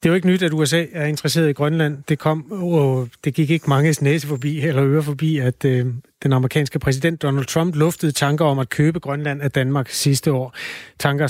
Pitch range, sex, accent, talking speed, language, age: 135-165 Hz, male, native, 220 wpm, Danish, 30-49